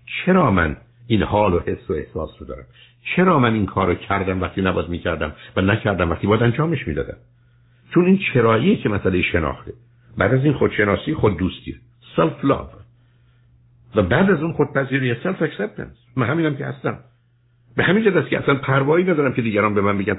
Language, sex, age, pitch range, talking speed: Persian, male, 60-79, 110-145 Hz, 190 wpm